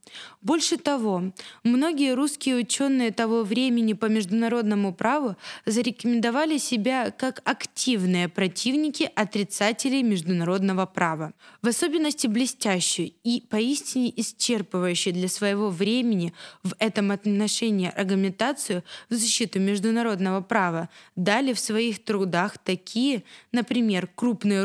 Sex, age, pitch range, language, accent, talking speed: female, 20-39, 195-245 Hz, Russian, native, 100 wpm